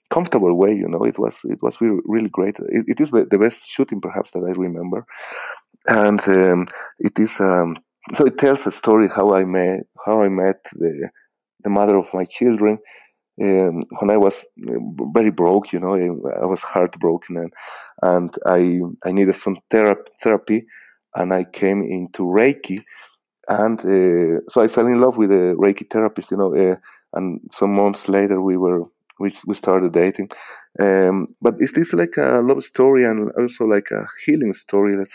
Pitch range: 95-110 Hz